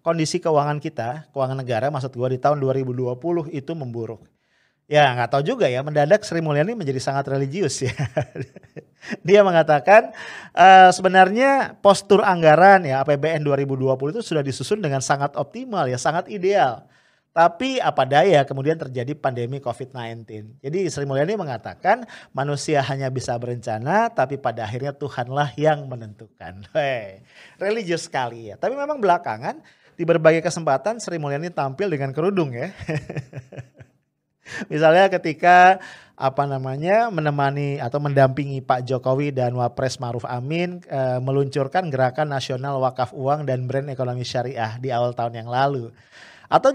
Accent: Indonesian